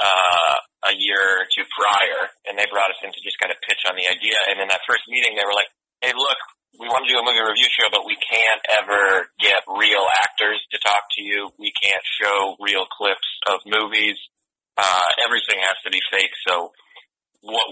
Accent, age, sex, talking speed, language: American, 30-49, male, 215 wpm, English